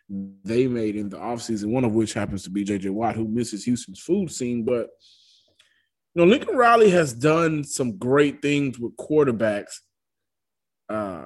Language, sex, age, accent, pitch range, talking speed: English, male, 20-39, American, 105-140 Hz, 165 wpm